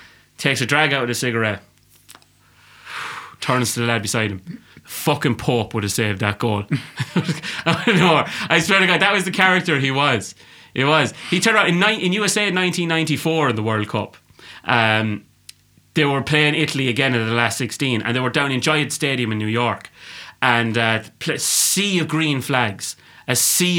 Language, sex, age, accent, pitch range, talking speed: English, male, 30-49, British, 115-150 Hz, 195 wpm